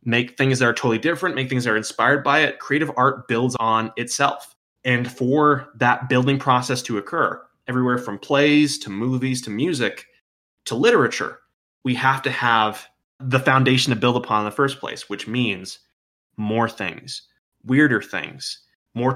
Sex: male